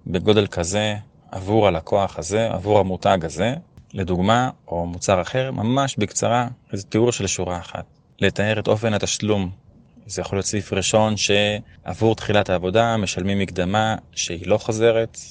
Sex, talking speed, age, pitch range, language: male, 140 wpm, 30-49, 95-115 Hz, Hebrew